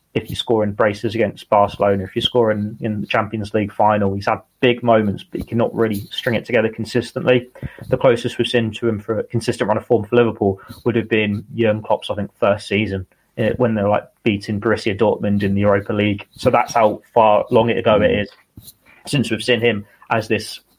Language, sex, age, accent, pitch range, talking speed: English, male, 20-39, British, 110-140 Hz, 215 wpm